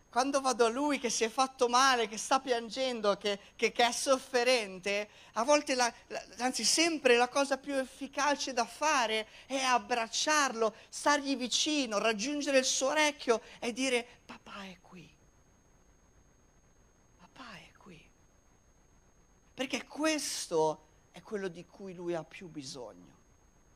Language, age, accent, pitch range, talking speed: Italian, 50-69, native, 195-260 Hz, 135 wpm